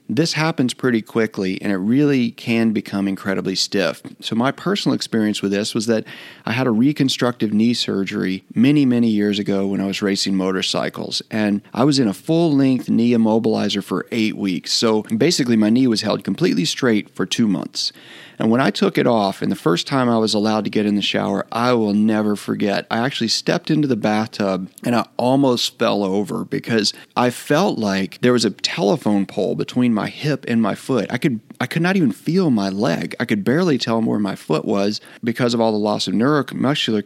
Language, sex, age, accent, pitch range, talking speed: English, male, 40-59, American, 100-125 Hz, 205 wpm